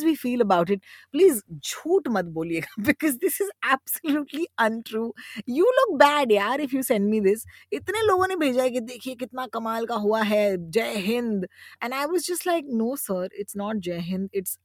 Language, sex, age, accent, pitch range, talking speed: Hindi, female, 20-39, native, 175-240 Hz, 200 wpm